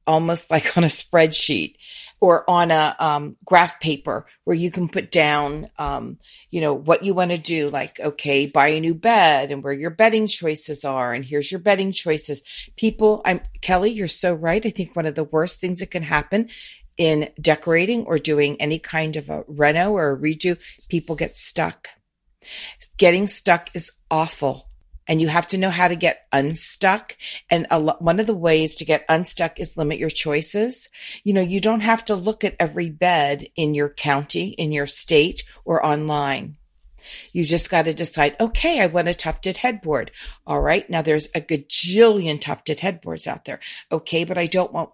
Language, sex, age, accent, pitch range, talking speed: English, female, 40-59, American, 155-185 Hz, 190 wpm